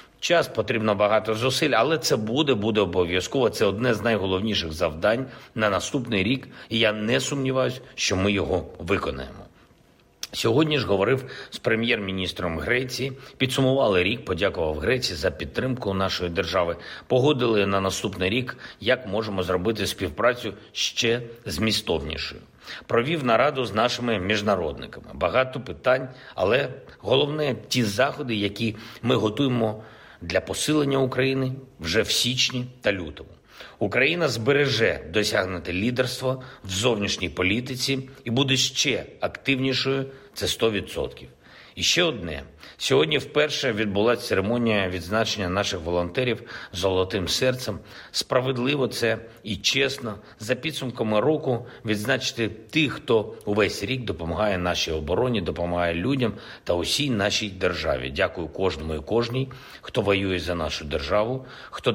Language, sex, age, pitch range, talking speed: Ukrainian, male, 50-69, 95-130 Hz, 125 wpm